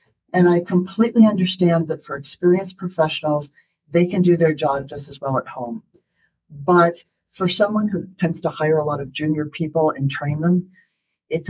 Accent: American